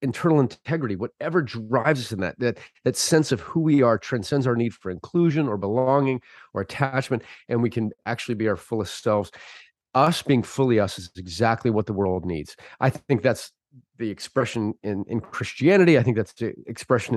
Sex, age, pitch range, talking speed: male, 30-49, 110-140 Hz, 190 wpm